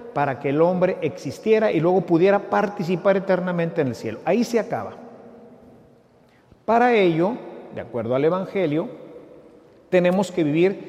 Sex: male